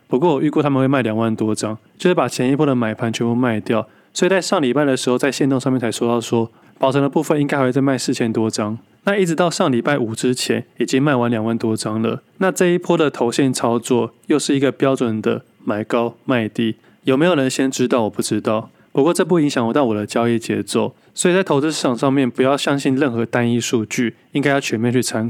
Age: 20-39